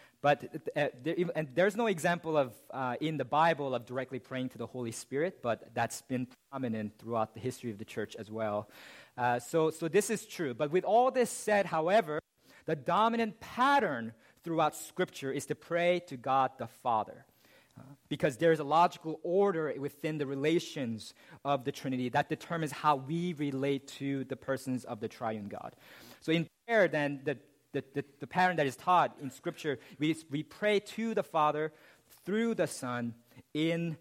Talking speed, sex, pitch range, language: 180 wpm, male, 130-165 Hz, English